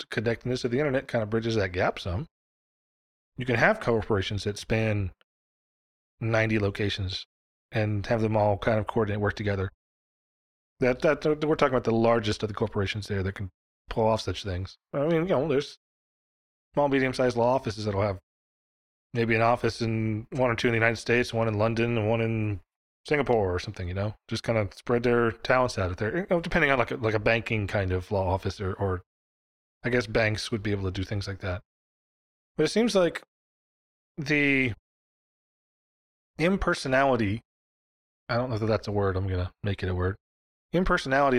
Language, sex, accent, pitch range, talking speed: English, male, American, 95-125 Hz, 185 wpm